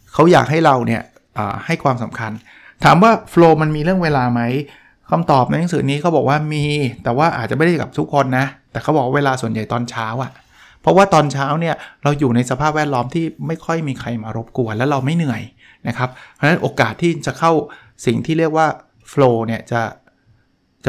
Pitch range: 125-165 Hz